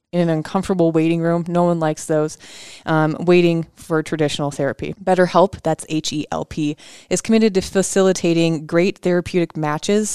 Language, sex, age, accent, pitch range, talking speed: English, female, 20-39, American, 155-180 Hz, 140 wpm